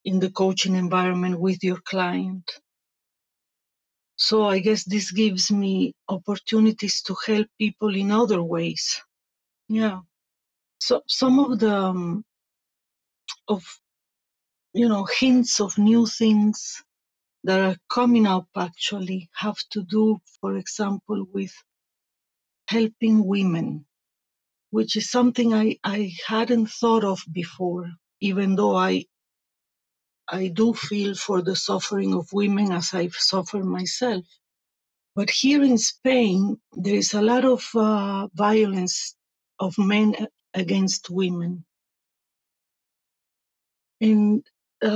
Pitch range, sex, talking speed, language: 185-220 Hz, female, 115 wpm, English